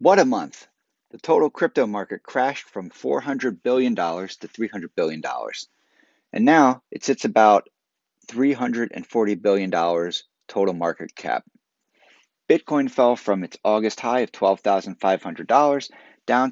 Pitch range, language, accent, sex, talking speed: 95-140 Hz, English, American, male, 120 wpm